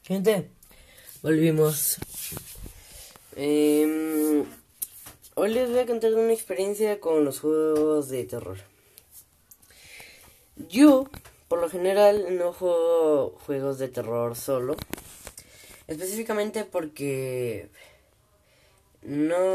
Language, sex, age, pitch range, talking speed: Spanish, female, 10-29, 120-185 Hz, 85 wpm